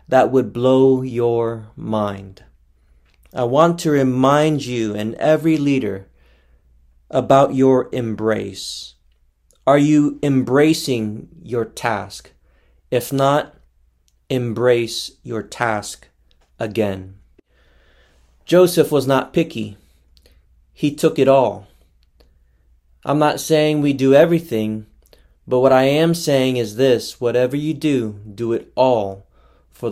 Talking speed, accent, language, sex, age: 110 wpm, American, English, male, 30-49